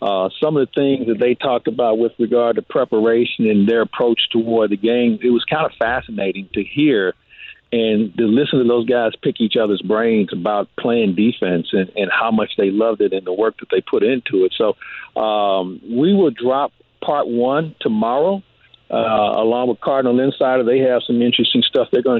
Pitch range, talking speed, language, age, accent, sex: 115-145 Hz, 200 wpm, English, 50-69, American, male